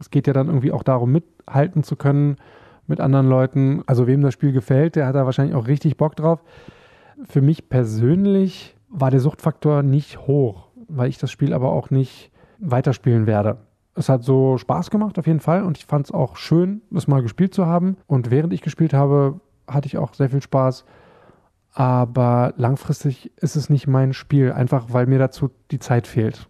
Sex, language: male, German